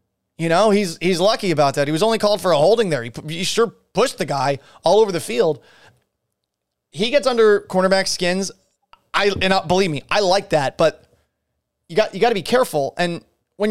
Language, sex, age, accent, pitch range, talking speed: English, male, 30-49, American, 155-205 Hz, 210 wpm